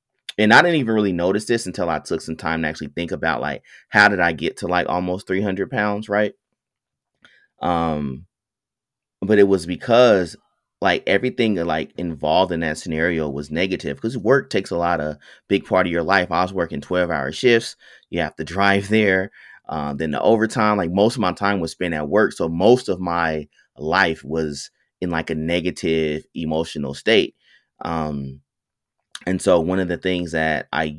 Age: 30-49